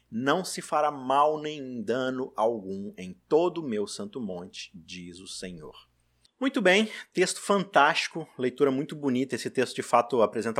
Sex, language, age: male, Portuguese, 20-39